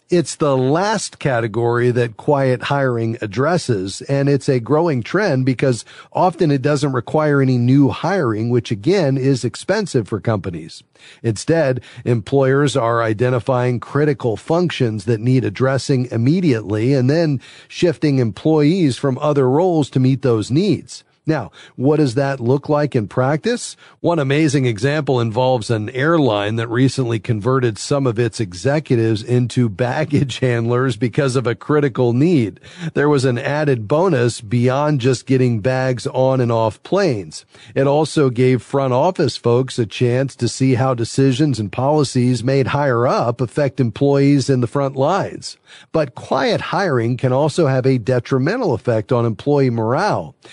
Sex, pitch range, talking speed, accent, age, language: male, 120-145 Hz, 150 wpm, American, 40-59, English